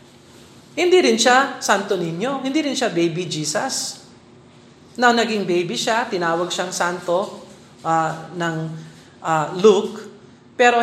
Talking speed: 120 wpm